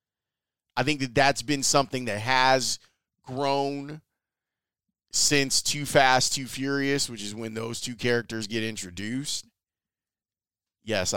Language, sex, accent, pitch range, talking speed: English, male, American, 110-150 Hz, 125 wpm